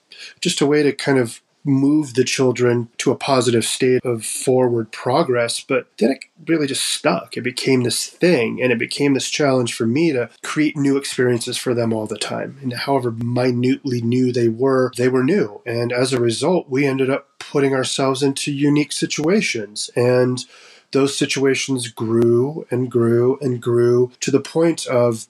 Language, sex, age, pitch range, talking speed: English, male, 30-49, 115-135 Hz, 180 wpm